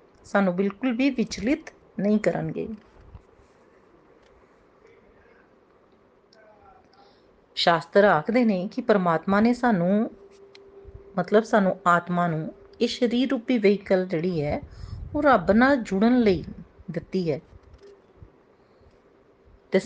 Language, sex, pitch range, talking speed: Punjabi, female, 180-250 Hz, 95 wpm